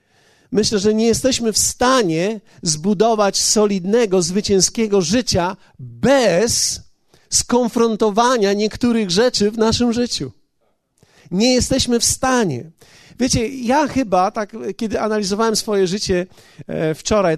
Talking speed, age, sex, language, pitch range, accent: 105 wpm, 40-59, male, Polish, 170-230 Hz, native